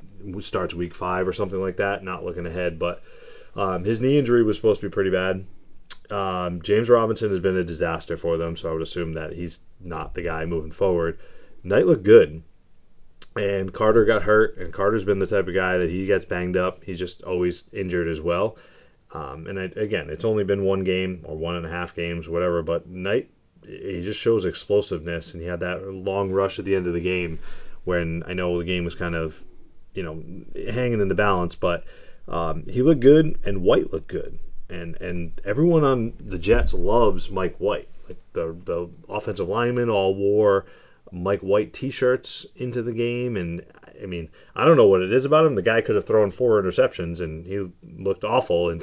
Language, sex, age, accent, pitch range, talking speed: English, male, 30-49, American, 85-100 Hz, 205 wpm